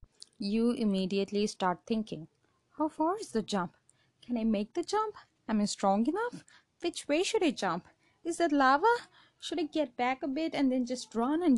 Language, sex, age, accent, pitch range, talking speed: English, female, 20-39, Indian, 185-250 Hz, 190 wpm